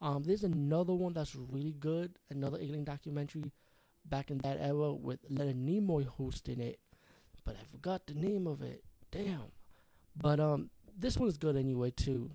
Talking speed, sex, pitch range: 170 wpm, male, 130-150 Hz